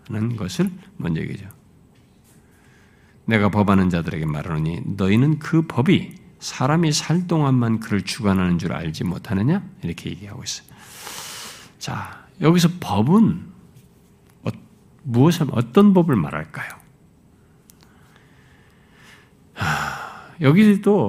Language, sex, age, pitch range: Korean, male, 50-69, 105-170 Hz